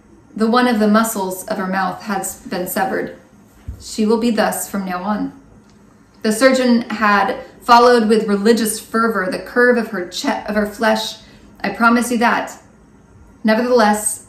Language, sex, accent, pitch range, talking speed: English, female, American, 195-230 Hz, 160 wpm